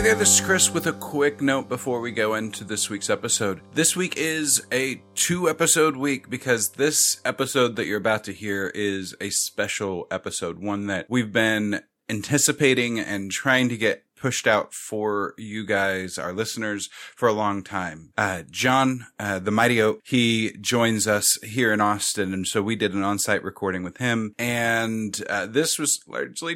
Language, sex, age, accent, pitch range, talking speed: English, male, 30-49, American, 100-130 Hz, 180 wpm